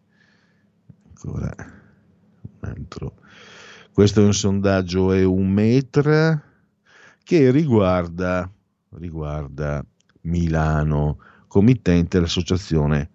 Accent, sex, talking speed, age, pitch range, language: native, male, 70 wpm, 50-69, 80-120 Hz, Italian